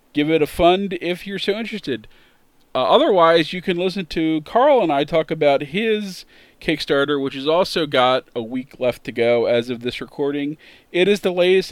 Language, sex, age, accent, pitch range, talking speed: English, male, 40-59, American, 135-170 Hz, 195 wpm